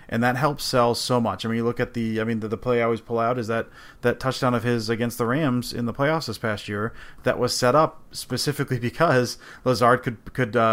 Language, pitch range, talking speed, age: English, 115-130 Hz, 250 wpm, 30-49